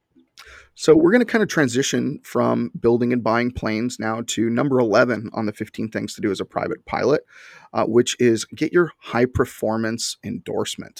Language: English